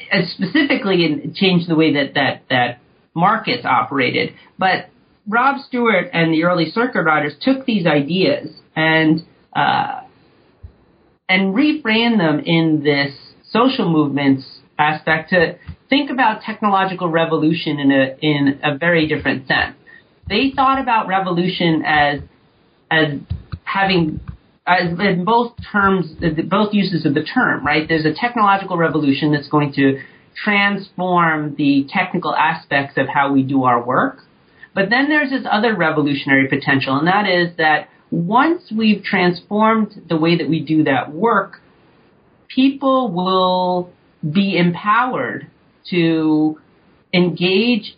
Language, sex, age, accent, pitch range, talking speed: English, male, 40-59, American, 150-205 Hz, 130 wpm